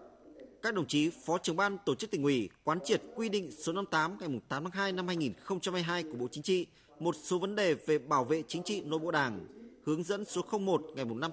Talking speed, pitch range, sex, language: 235 wpm, 155-210 Hz, male, Vietnamese